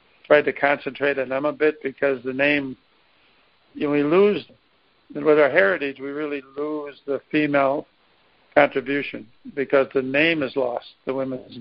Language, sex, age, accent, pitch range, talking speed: English, male, 50-69, American, 135-145 Hz, 145 wpm